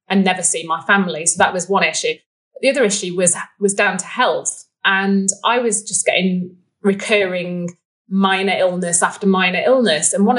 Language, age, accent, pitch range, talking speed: English, 30-49, British, 170-205 Hz, 180 wpm